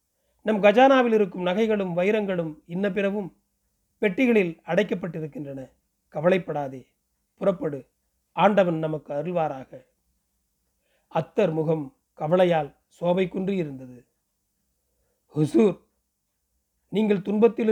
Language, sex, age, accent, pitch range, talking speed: Tamil, male, 40-59, native, 145-210 Hz, 75 wpm